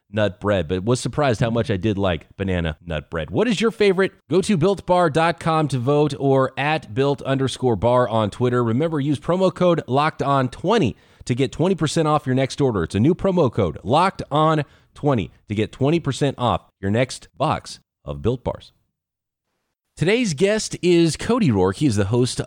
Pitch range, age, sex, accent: 100-140 Hz, 30-49, male, American